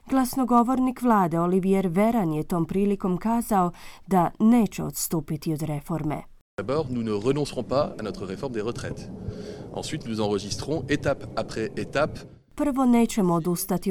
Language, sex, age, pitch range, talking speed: Croatian, female, 30-49, 170-225 Hz, 115 wpm